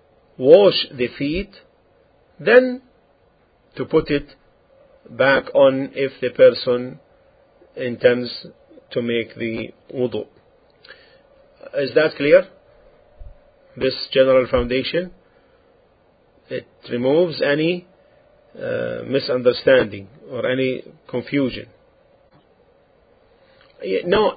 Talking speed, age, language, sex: 80 wpm, 50-69, English, male